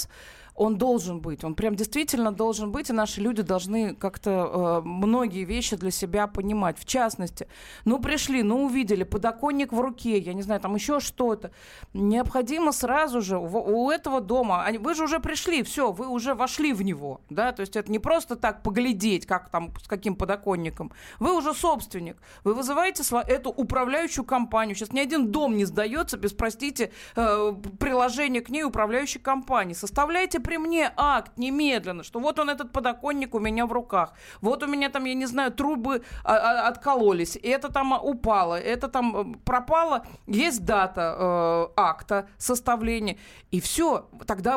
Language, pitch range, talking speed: Russian, 210-280 Hz, 165 wpm